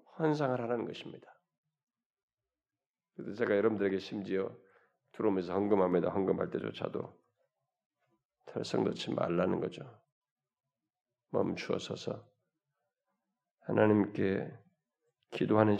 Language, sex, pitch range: Korean, male, 110-160 Hz